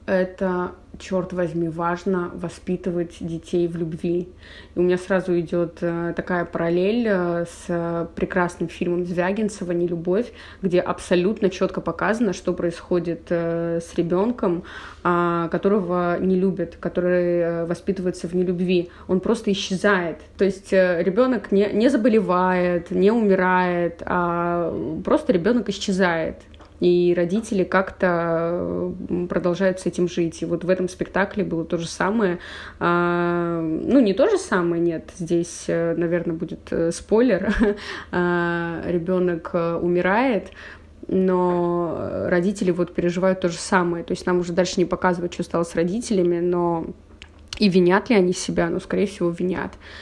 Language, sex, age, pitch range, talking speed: Russian, female, 20-39, 175-185 Hz, 125 wpm